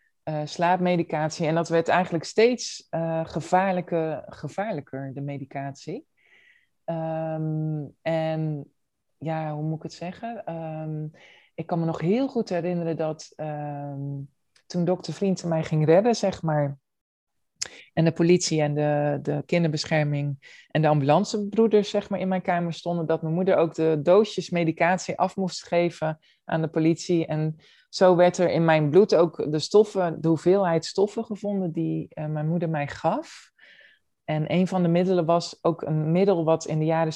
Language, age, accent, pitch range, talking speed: Dutch, 20-39, Dutch, 155-180 Hz, 160 wpm